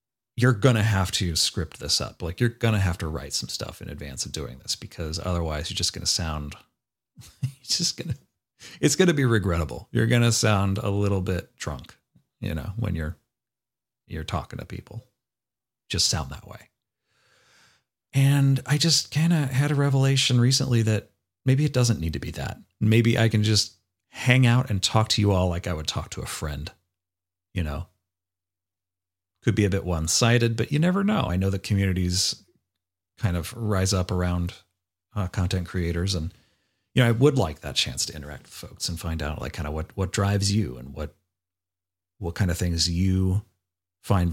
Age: 40-59